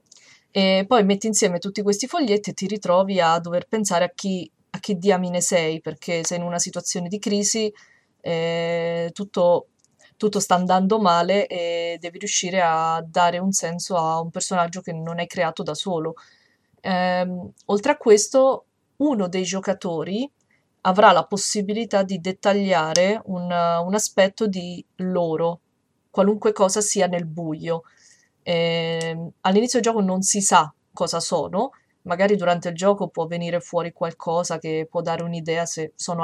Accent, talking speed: native, 150 wpm